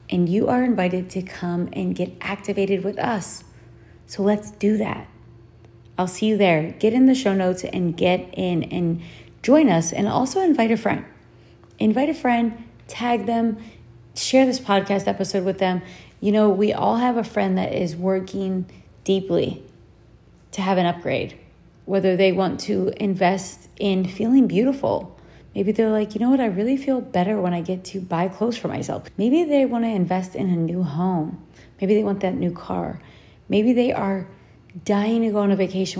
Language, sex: English, female